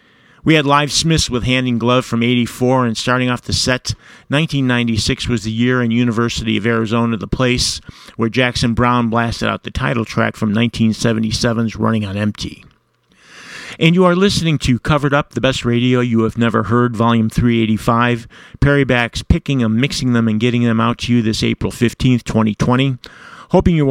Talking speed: 180 wpm